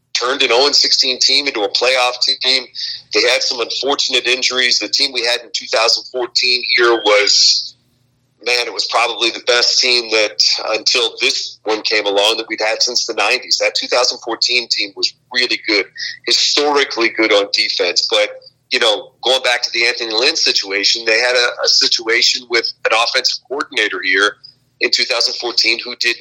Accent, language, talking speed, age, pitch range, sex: American, English, 170 wpm, 40-59, 110-165 Hz, male